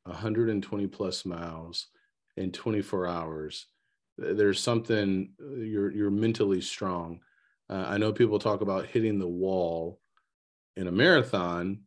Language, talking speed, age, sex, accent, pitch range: English, 120 wpm, 40-59, male, American, 90-105 Hz